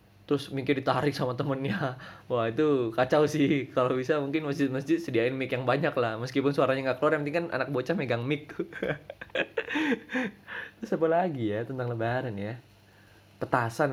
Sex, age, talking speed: male, 20-39, 160 wpm